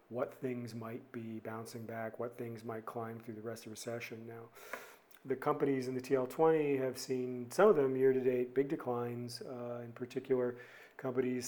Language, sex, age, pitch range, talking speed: English, male, 40-59, 115-130 Hz, 180 wpm